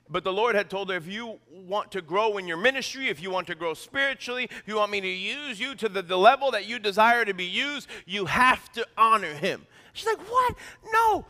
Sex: male